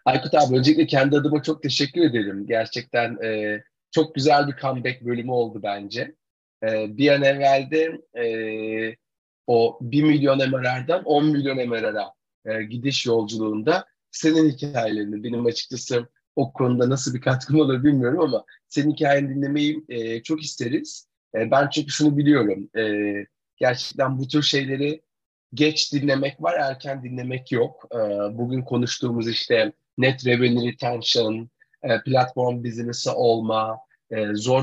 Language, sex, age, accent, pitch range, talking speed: Turkish, male, 40-59, native, 115-150 Hz, 135 wpm